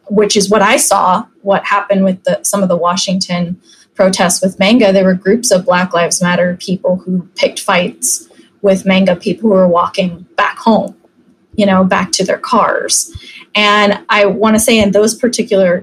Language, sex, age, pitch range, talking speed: English, female, 20-39, 190-220 Hz, 185 wpm